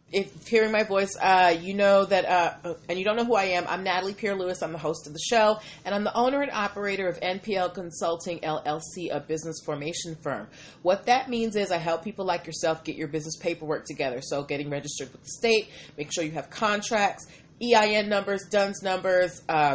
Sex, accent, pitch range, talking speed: female, American, 145-180 Hz, 215 wpm